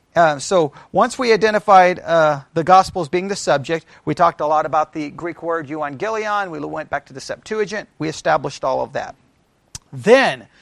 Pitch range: 165-215 Hz